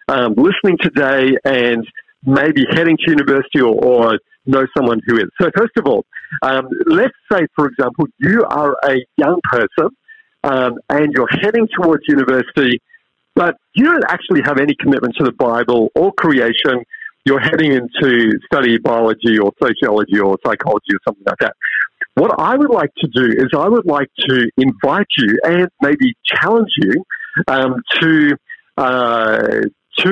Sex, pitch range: male, 125-175 Hz